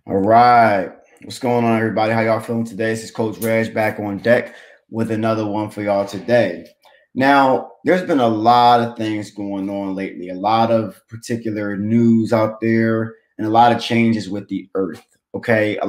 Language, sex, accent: English, male, American